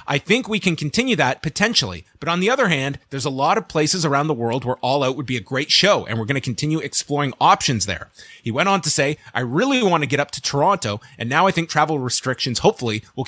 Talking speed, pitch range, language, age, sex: 260 wpm, 125-160 Hz, English, 30-49, male